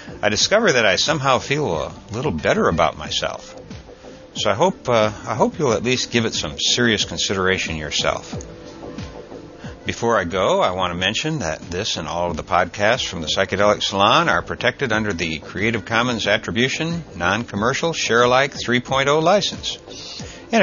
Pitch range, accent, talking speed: 85-110 Hz, American, 165 wpm